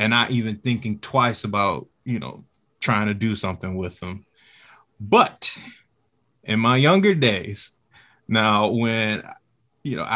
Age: 20-39